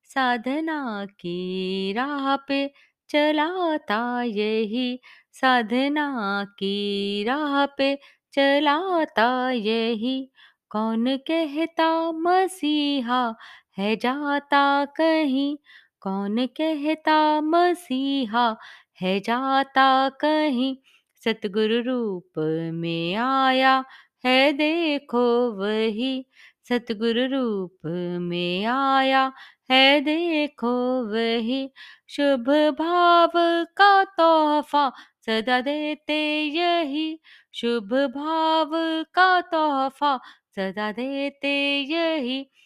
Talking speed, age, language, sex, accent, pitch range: 75 wpm, 20-39, Hindi, female, native, 230-300 Hz